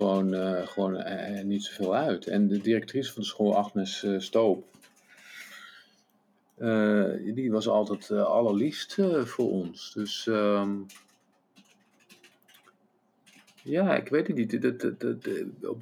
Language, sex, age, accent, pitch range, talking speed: English, male, 50-69, Dutch, 95-110 Hz, 120 wpm